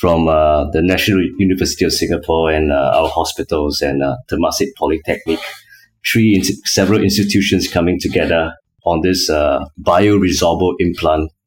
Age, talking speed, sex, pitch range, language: 30-49, 135 wpm, male, 90-100 Hz, English